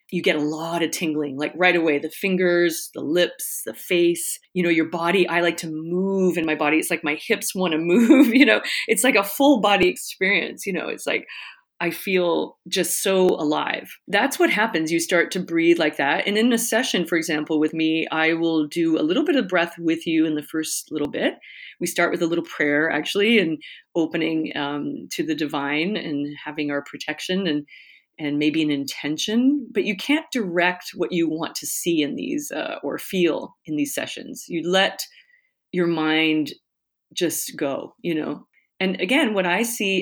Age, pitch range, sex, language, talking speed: 30-49, 160-220 Hz, female, English, 200 wpm